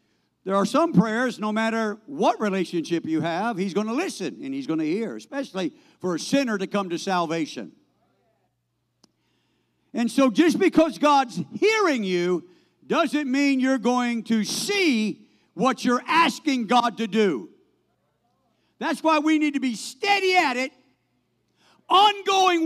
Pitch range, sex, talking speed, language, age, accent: 225-320 Hz, male, 150 wpm, English, 50-69, American